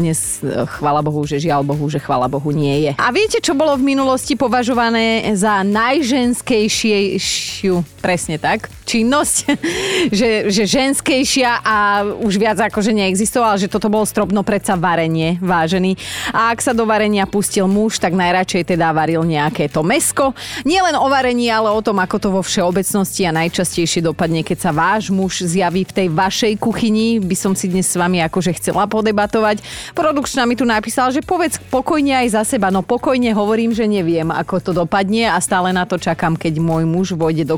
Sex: female